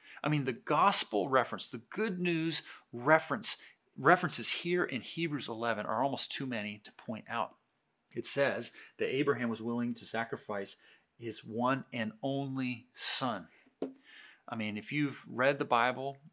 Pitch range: 115-145 Hz